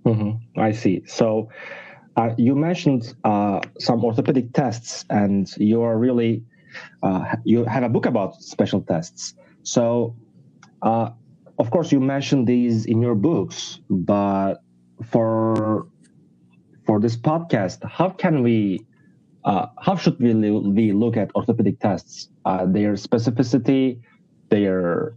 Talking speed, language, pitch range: 125 wpm, Turkish, 110-135 Hz